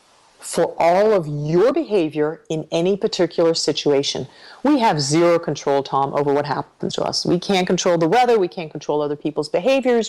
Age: 40-59